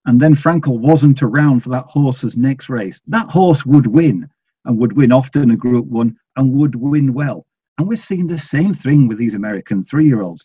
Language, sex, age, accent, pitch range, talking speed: English, male, 50-69, British, 120-165 Hz, 200 wpm